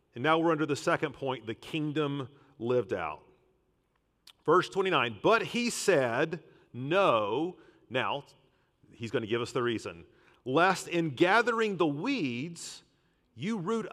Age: 40-59